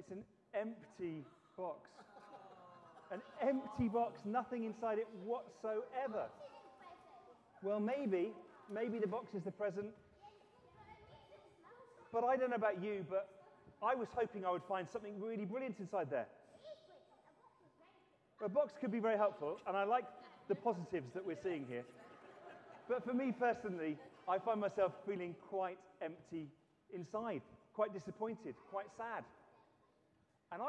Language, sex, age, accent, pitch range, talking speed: English, male, 30-49, British, 175-235 Hz, 135 wpm